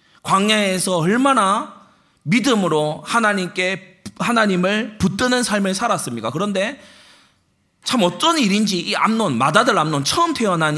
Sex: male